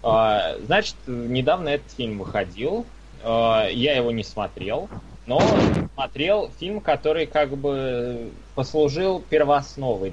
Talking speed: 100 wpm